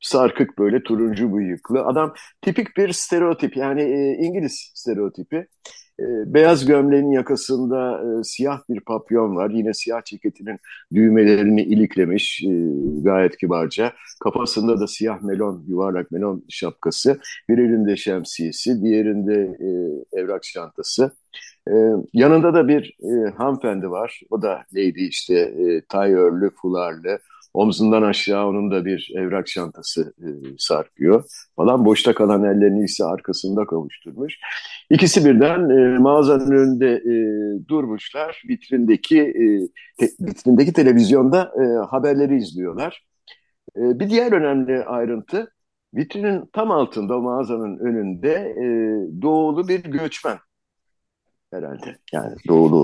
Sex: male